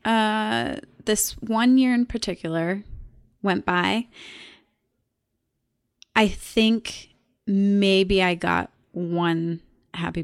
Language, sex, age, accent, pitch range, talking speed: English, female, 20-39, American, 180-270 Hz, 90 wpm